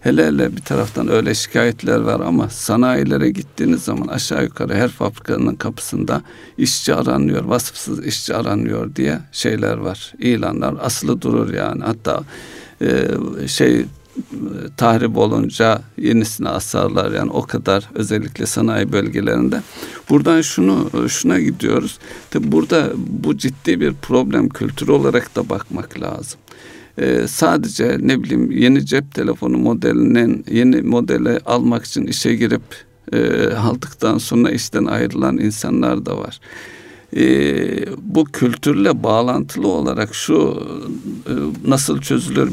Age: 60-79